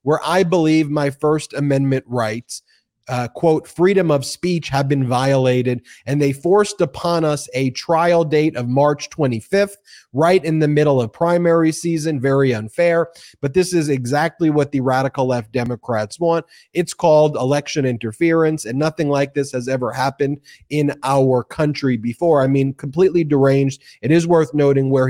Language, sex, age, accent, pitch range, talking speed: English, male, 30-49, American, 125-165 Hz, 165 wpm